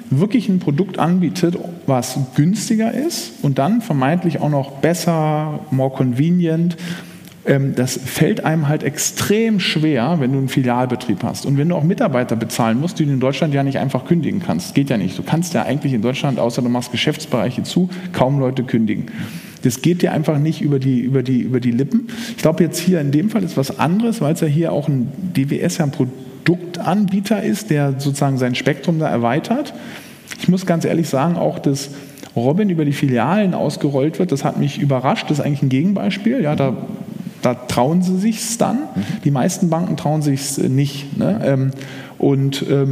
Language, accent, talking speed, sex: German, German, 185 wpm, male